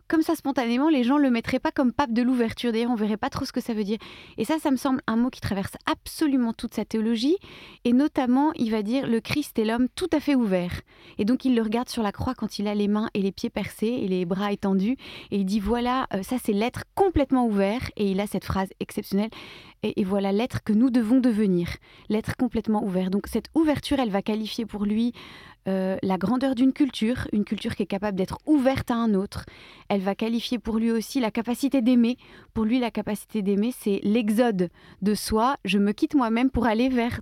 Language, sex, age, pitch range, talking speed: French, female, 30-49, 210-255 Hz, 240 wpm